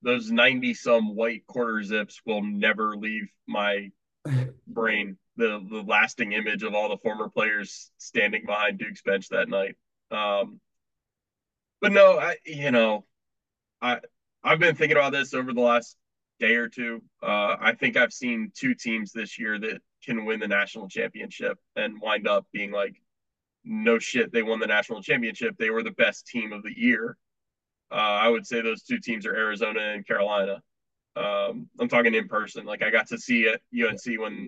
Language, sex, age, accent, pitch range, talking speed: English, male, 20-39, American, 110-155 Hz, 180 wpm